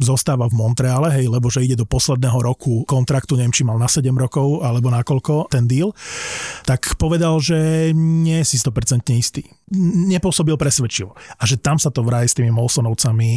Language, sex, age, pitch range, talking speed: Slovak, male, 30-49, 125-150 Hz, 175 wpm